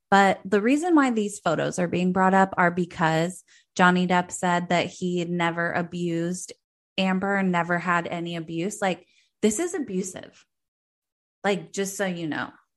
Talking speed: 165 wpm